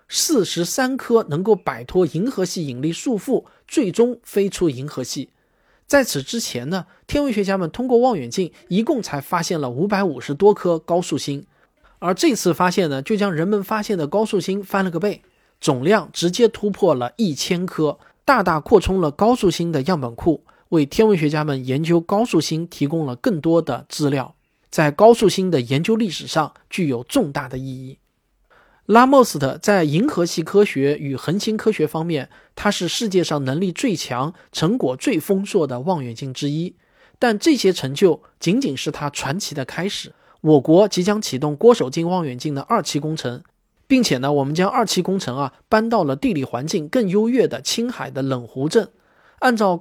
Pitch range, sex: 145-210 Hz, male